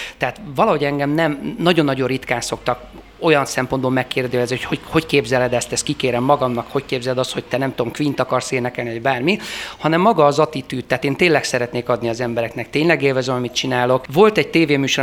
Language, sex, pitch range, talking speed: Hungarian, male, 125-150 Hz, 190 wpm